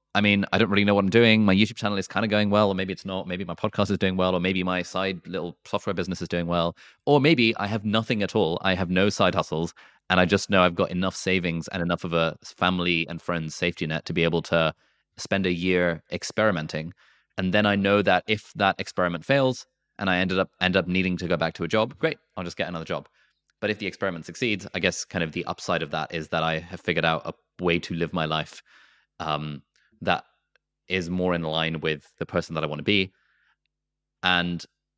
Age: 20-39